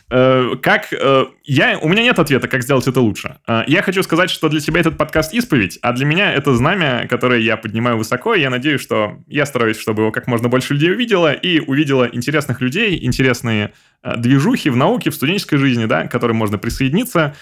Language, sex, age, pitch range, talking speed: Russian, male, 20-39, 110-145 Hz, 195 wpm